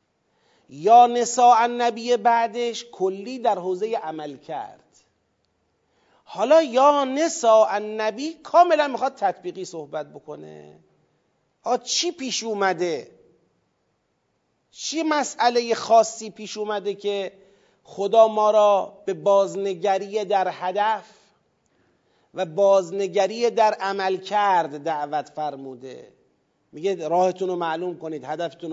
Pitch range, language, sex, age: 170-240 Hz, Persian, male, 40-59